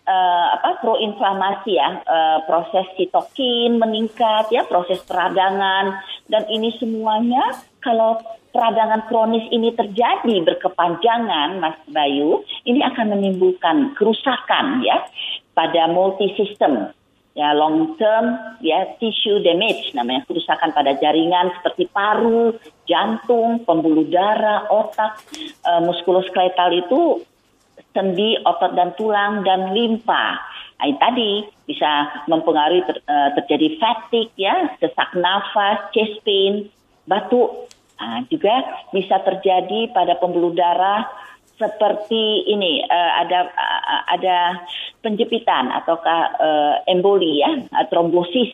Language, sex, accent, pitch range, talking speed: Indonesian, female, native, 175-230 Hz, 105 wpm